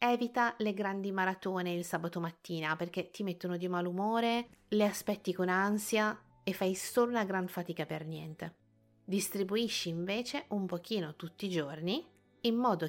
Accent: native